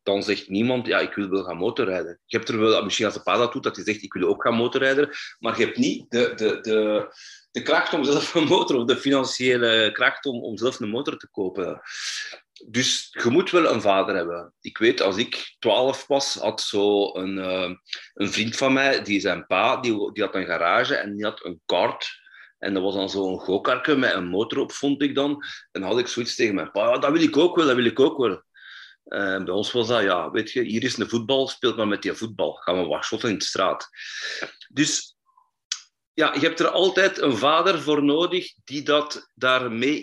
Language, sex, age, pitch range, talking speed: Dutch, male, 30-49, 120-180 Hz, 230 wpm